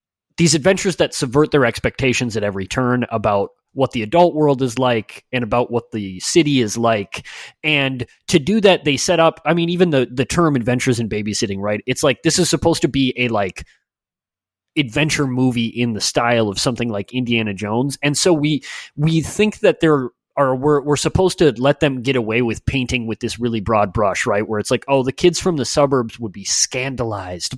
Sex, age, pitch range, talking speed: male, 20-39, 115-160 Hz, 205 wpm